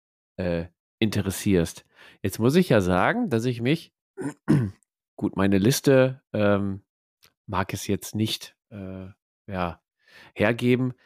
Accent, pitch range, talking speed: German, 100-135 Hz, 105 wpm